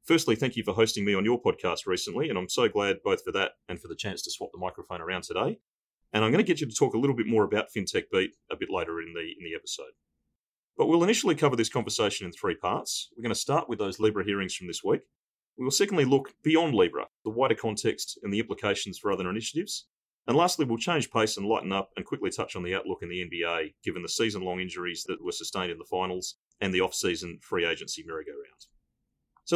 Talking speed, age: 240 wpm, 30-49